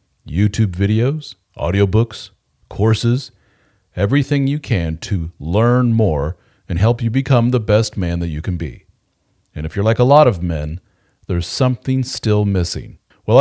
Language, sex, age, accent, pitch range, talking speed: English, male, 40-59, American, 95-120 Hz, 150 wpm